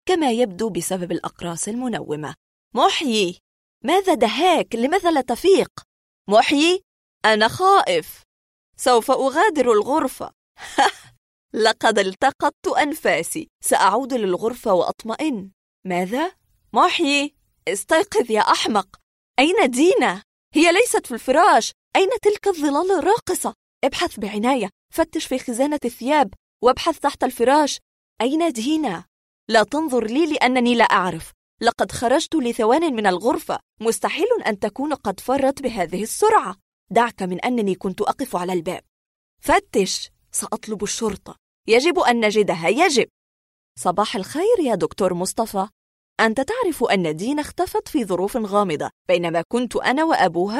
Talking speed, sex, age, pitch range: 115 wpm, female, 20-39, 200-310 Hz